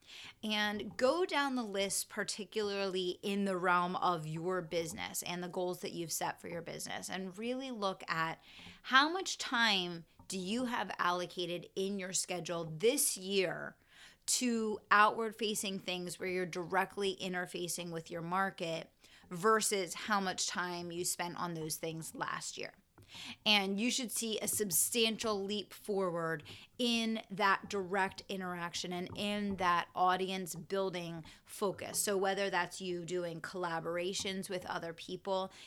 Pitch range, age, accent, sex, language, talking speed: 175-200 Hz, 30-49, American, female, English, 145 wpm